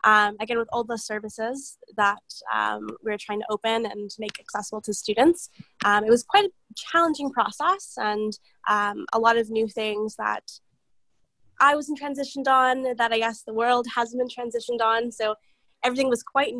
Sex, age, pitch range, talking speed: female, 10-29, 210-245 Hz, 175 wpm